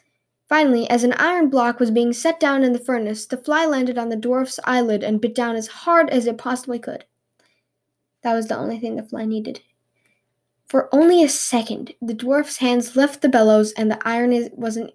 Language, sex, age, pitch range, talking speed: English, female, 10-29, 235-290 Hz, 200 wpm